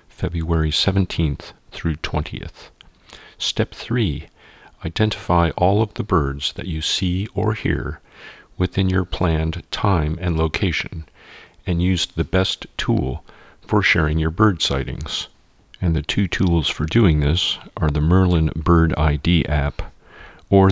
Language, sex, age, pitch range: English, male, 40-59, 75-90 Hz